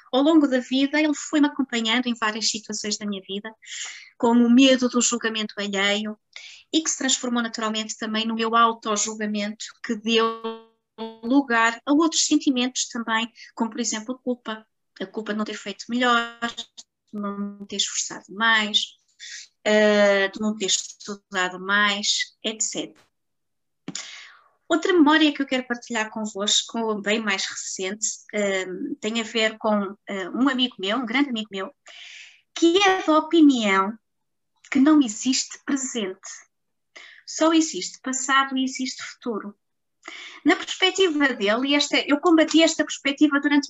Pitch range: 215-285 Hz